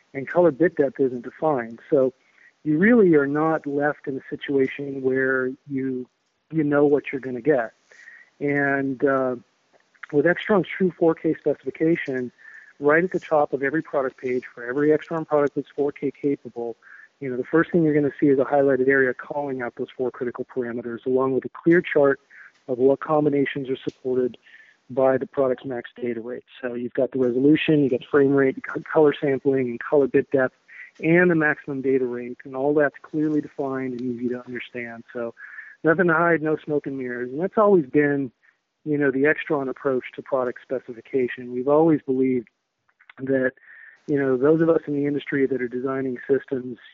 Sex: male